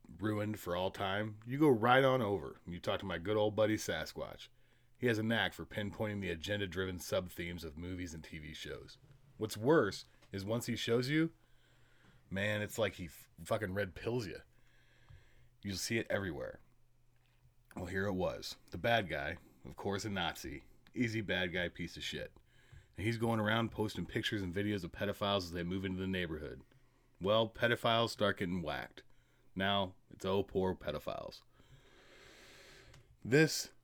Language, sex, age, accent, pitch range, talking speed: English, male, 30-49, American, 95-120 Hz, 170 wpm